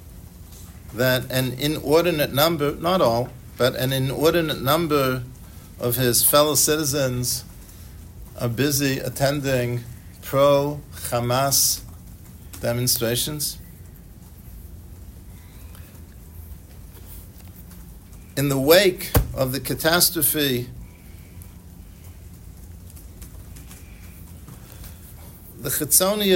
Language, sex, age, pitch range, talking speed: English, male, 50-69, 85-130 Hz, 60 wpm